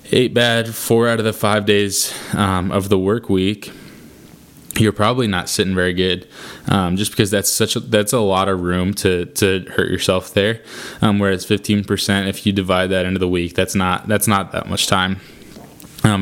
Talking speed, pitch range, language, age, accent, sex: 195 wpm, 95-110 Hz, English, 20-39, American, male